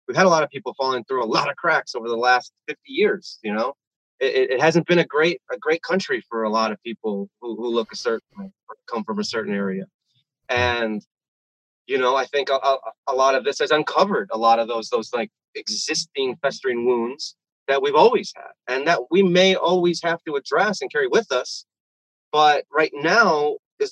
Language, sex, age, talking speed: English, male, 30-49, 210 wpm